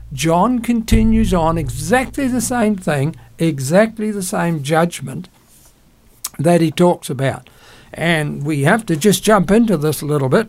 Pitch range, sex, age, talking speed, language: 150-205 Hz, male, 60-79, 150 wpm, English